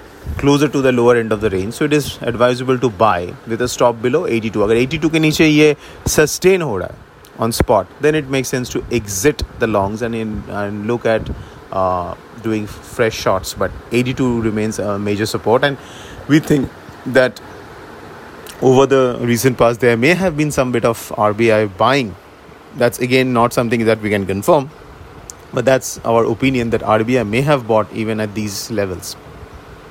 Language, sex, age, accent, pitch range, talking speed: English, male, 30-49, Indian, 110-135 Hz, 175 wpm